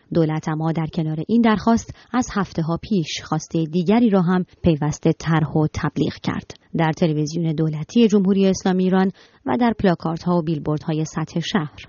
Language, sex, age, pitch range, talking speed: Persian, male, 30-49, 155-195 Hz, 170 wpm